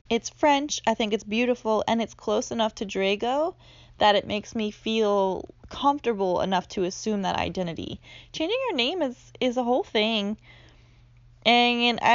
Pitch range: 195-265 Hz